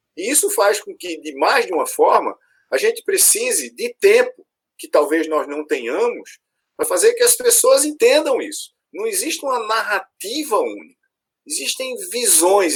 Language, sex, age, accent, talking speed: Portuguese, male, 50-69, Brazilian, 165 wpm